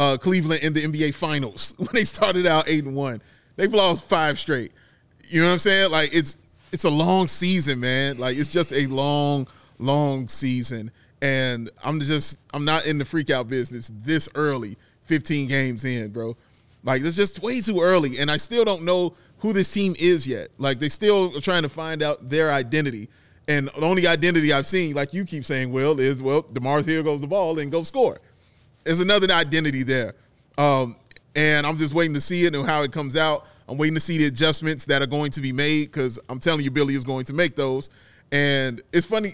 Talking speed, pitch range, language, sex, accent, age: 215 wpm, 135-165 Hz, English, male, American, 30-49